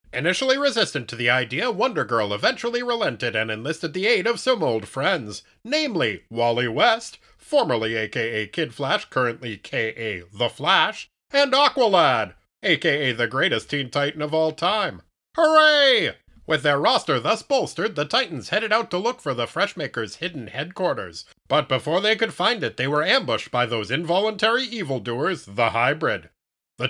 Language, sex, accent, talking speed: English, male, American, 160 wpm